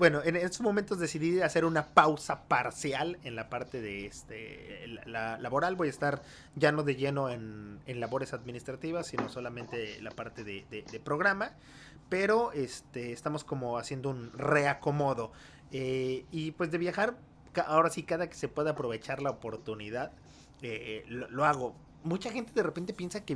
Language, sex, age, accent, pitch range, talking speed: Spanish, male, 30-49, Mexican, 125-160 Hz, 175 wpm